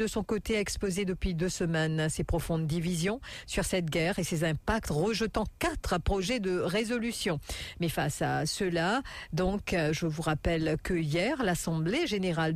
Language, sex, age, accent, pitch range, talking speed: English, female, 50-69, French, 160-195 Hz, 160 wpm